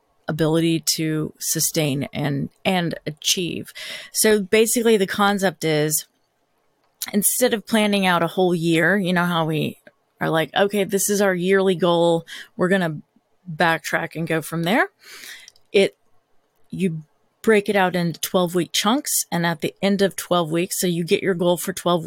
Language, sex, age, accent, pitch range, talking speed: English, female, 30-49, American, 165-200 Hz, 160 wpm